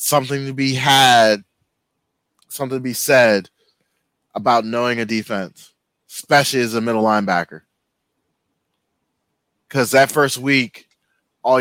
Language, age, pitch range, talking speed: English, 20-39, 110-125 Hz, 115 wpm